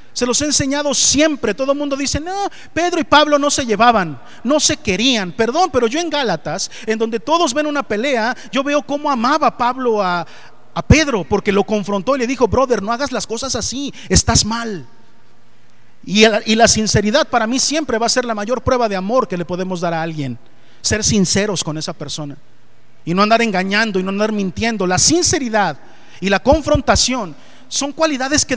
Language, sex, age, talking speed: Spanish, male, 40-59, 195 wpm